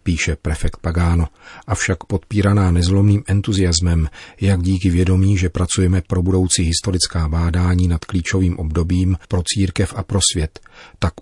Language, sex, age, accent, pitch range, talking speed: Czech, male, 40-59, native, 90-100 Hz, 135 wpm